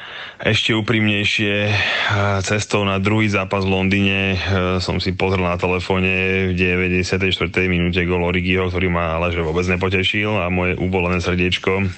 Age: 20-39